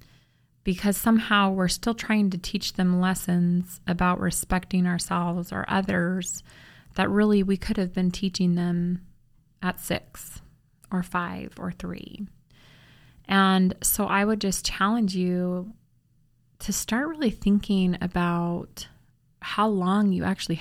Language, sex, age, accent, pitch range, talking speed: English, female, 20-39, American, 165-190 Hz, 130 wpm